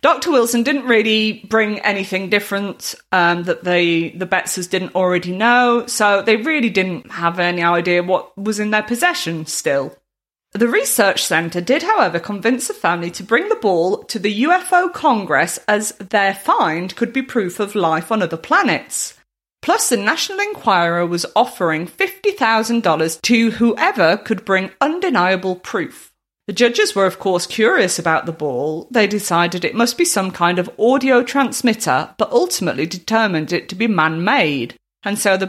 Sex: female